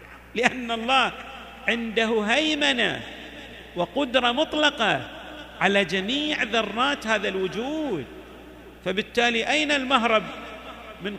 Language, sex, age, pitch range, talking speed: Arabic, male, 50-69, 165-245 Hz, 80 wpm